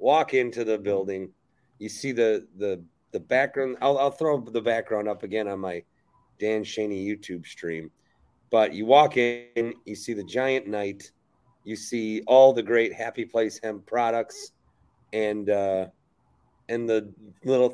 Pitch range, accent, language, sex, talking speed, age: 110-140 Hz, American, English, male, 155 wpm, 30-49